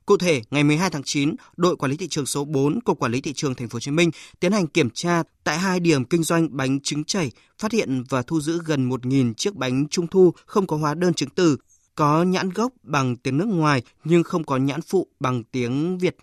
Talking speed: 235 wpm